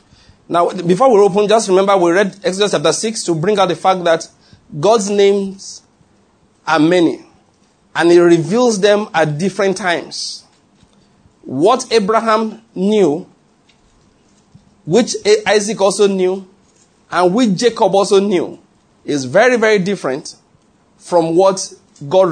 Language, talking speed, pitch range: English, 125 wpm, 165-210 Hz